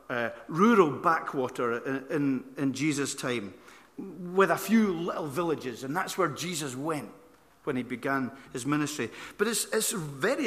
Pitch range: 140-185 Hz